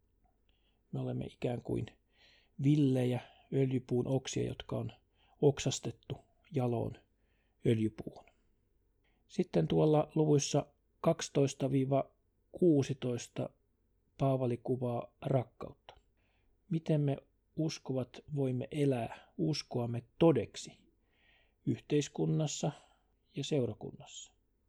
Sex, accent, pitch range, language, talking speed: male, native, 120-150 Hz, Finnish, 70 wpm